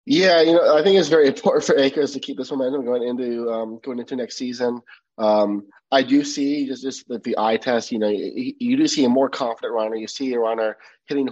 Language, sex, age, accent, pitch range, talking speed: English, male, 30-49, American, 110-140 Hz, 245 wpm